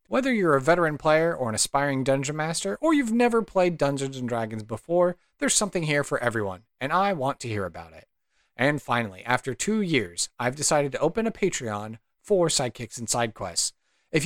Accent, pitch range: American, 115-165 Hz